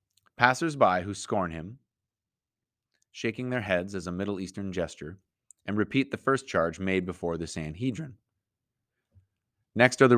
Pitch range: 95-125 Hz